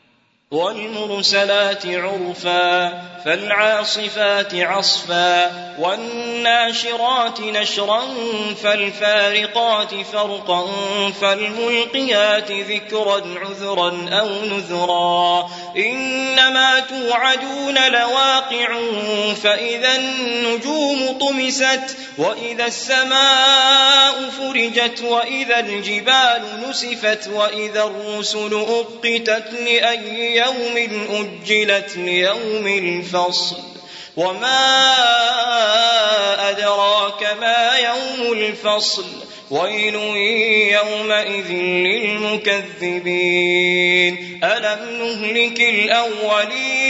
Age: 20-39